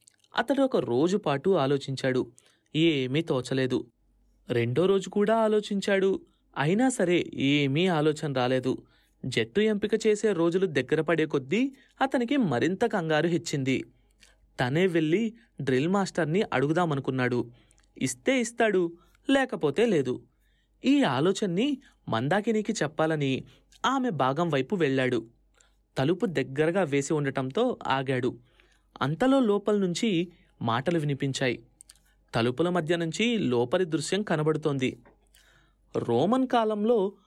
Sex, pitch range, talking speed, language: male, 135-215 Hz, 95 wpm, Telugu